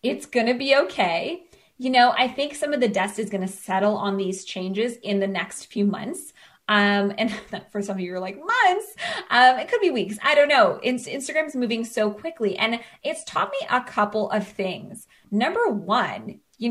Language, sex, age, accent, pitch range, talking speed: English, female, 20-39, American, 205-270 Hz, 205 wpm